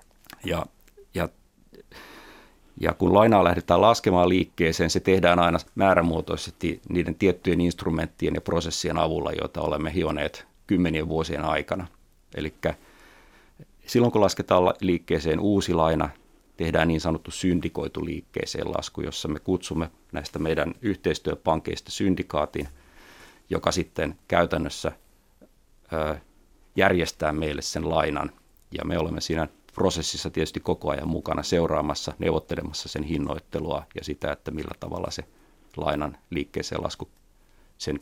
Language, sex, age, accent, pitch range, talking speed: Finnish, male, 30-49, native, 80-90 Hz, 120 wpm